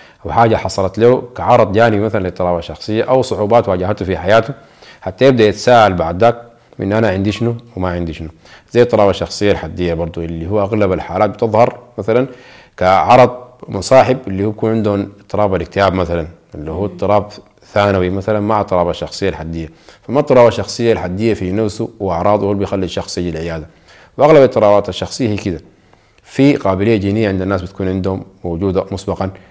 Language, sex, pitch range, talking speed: Arabic, male, 90-110 Hz, 160 wpm